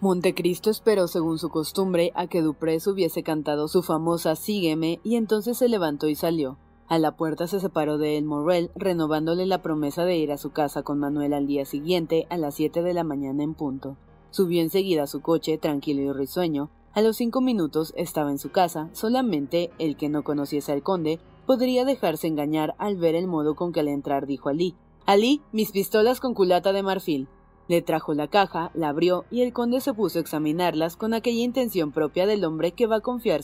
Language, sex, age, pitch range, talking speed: Spanish, female, 30-49, 150-190 Hz, 205 wpm